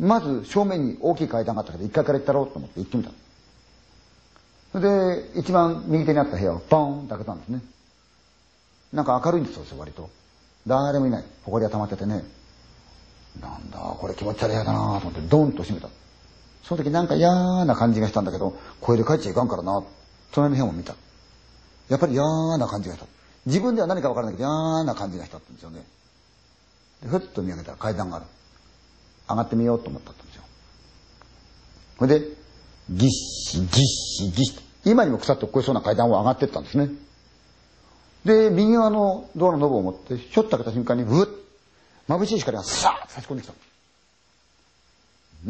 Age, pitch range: 40-59, 100-160 Hz